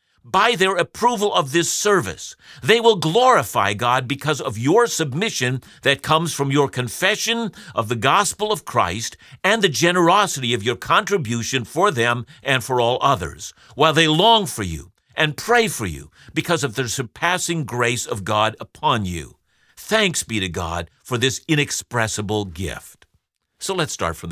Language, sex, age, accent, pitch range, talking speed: English, male, 50-69, American, 110-175 Hz, 165 wpm